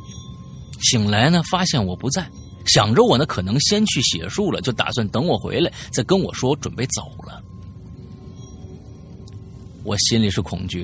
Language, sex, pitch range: Chinese, male, 100-145 Hz